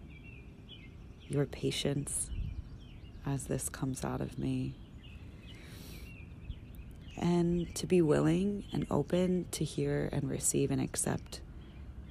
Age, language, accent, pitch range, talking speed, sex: 30-49, English, American, 90-140 Hz, 100 wpm, female